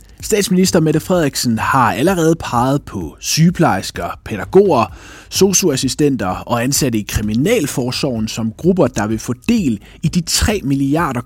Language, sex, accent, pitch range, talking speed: Danish, male, native, 110-155 Hz, 130 wpm